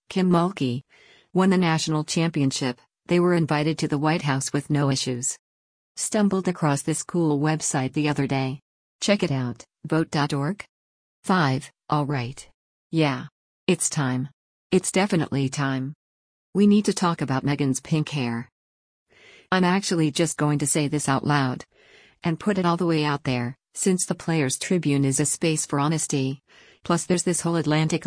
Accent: American